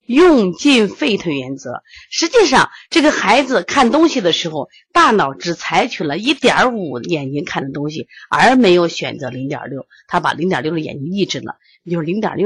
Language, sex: Chinese, female